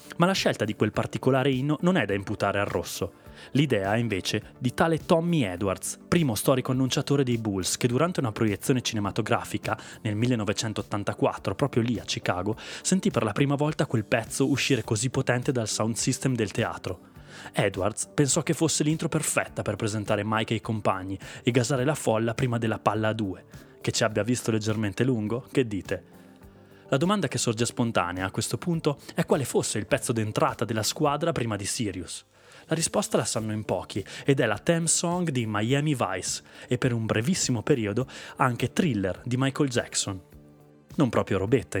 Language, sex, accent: Italian, male, native